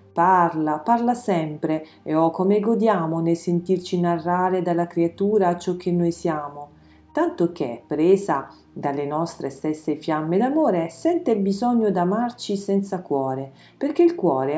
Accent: native